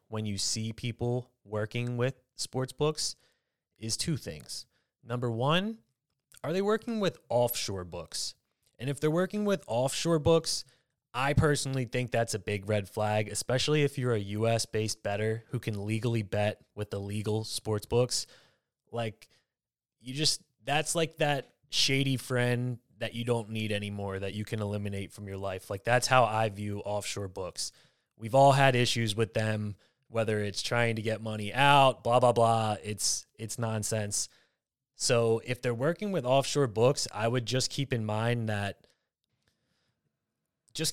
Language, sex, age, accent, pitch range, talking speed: English, male, 20-39, American, 105-125 Hz, 165 wpm